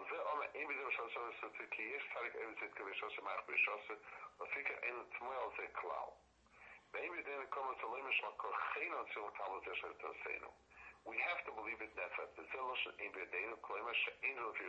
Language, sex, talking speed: English, male, 55 wpm